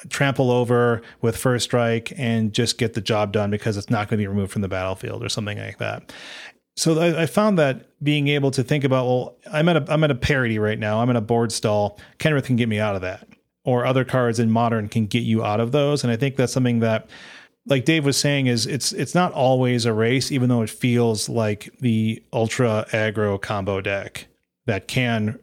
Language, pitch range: English, 110-130 Hz